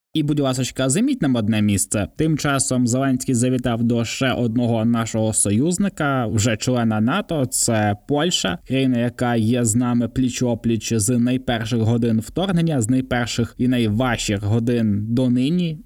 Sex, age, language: male, 20-39, Ukrainian